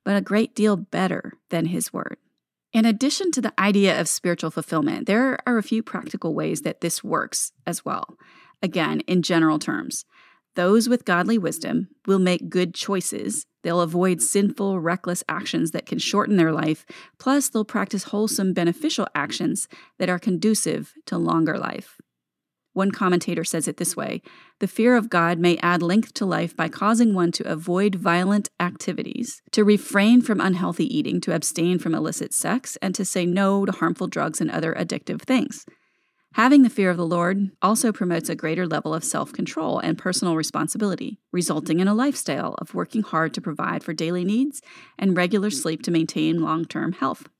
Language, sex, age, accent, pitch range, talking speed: English, female, 30-49, American, 175-225 Hz, 175 wpm